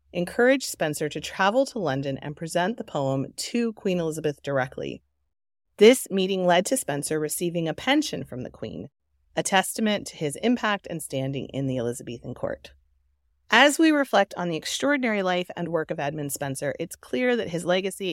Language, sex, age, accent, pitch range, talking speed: English, female, 30-49, American, 150-195 Hz, 175 wpm